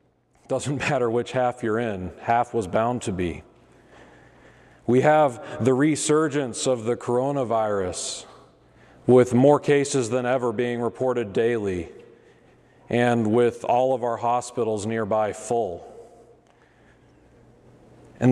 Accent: American